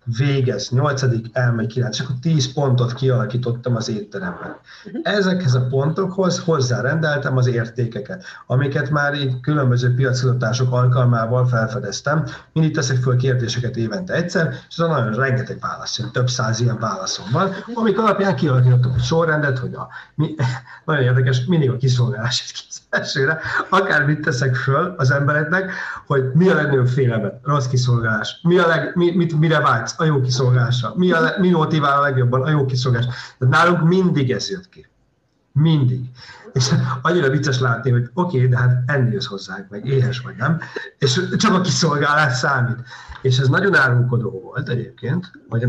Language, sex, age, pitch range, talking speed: Hungarian, male, 50-69, 125-155 Hz, 155 wpm